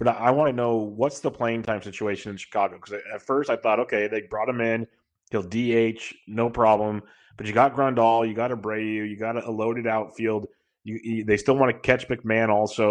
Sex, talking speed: male, 220 wpm